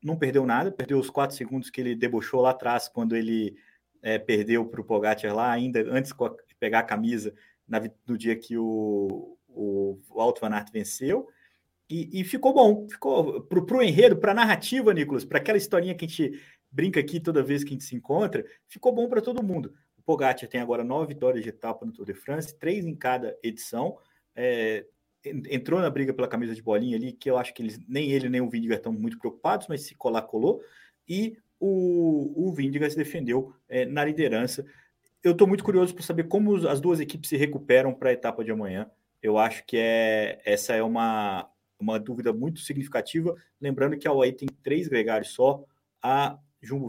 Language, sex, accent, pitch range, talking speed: Portuguese, male, Brazilian, 115-170 Hz, 200 wpm